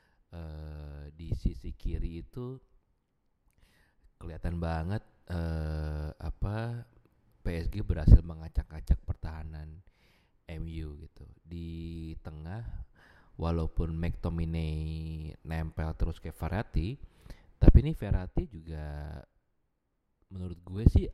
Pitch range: 80-90 Hz